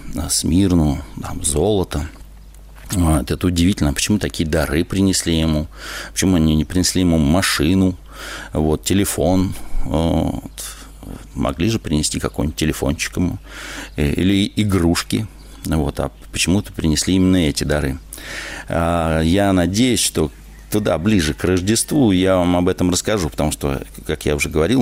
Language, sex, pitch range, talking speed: Russian, male, 75-95 Hz, 115 wpm